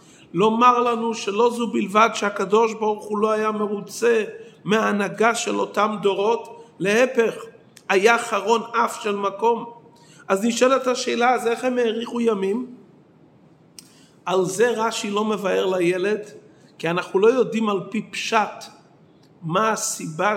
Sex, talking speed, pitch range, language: male, 130 wpm, 180-225 Hz, Hebrew